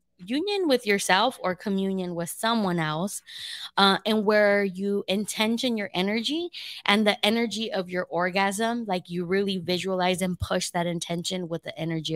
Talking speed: 160 wpm